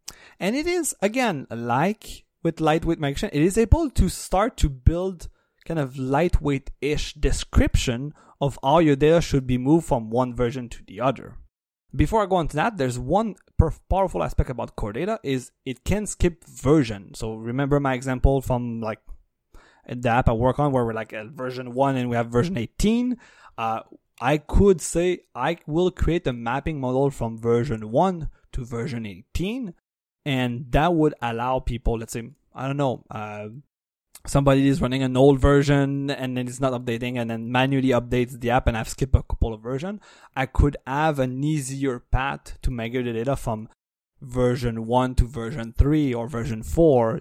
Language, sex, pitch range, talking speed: English, male, 120-150 Hz, 180 wpm